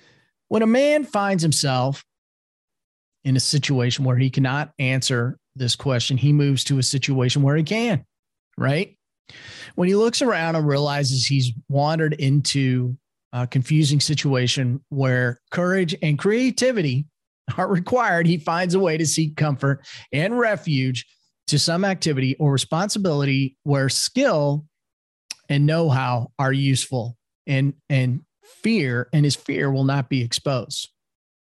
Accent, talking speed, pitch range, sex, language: American, 135 wpm, 130-160 Hz, male, English